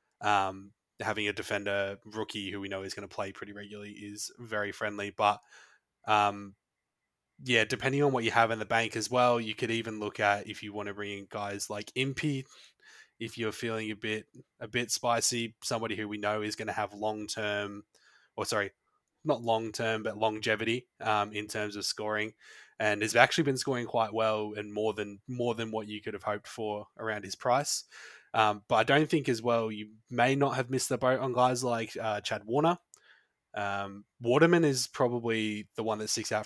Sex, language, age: male, English, 20-39